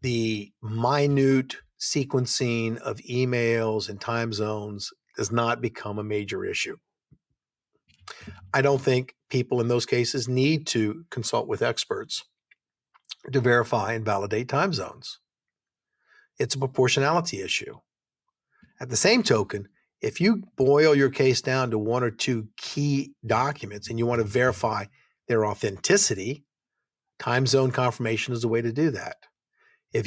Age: 50-69